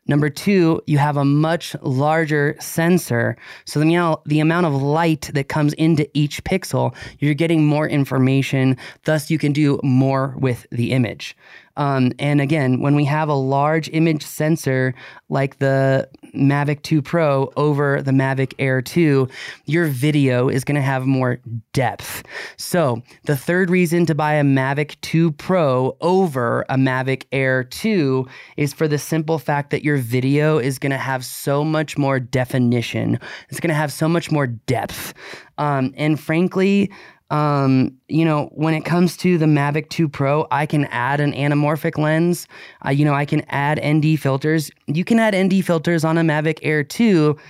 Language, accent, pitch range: English, American, 135-160 Hz